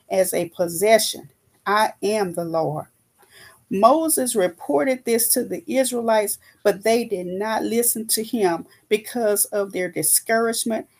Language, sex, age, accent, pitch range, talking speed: English, female, 40-59, American, 185-230 Hz, 130 wpm